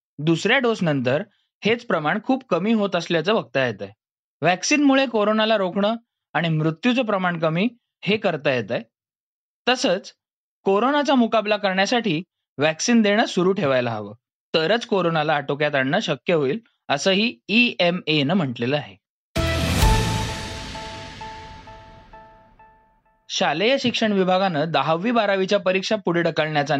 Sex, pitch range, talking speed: male, 150-220 Hz, 110 wpm